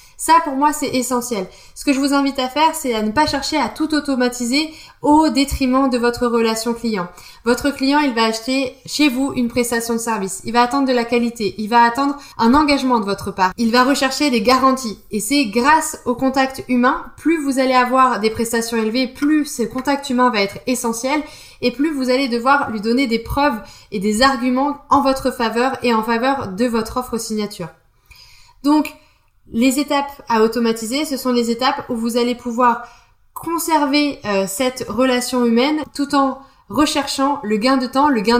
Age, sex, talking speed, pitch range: 20-39, female, 195 wpm, 230-275 Hz